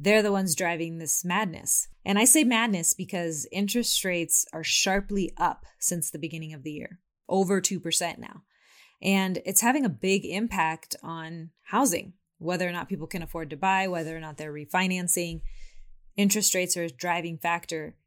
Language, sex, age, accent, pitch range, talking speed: English, female, 20-39, American, 165-200 Hz, 175 wpm